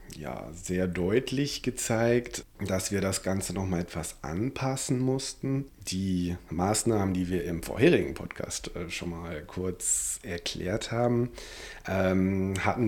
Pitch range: 95-130 Hz